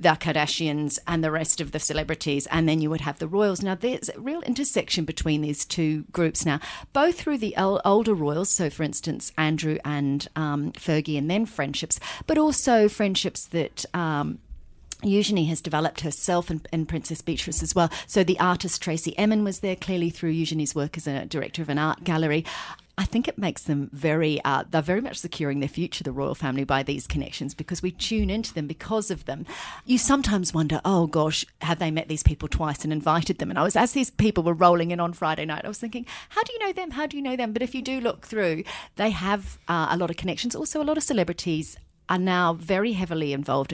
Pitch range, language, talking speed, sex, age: 155-195 Hz, English, 220 wpm, female, 40-59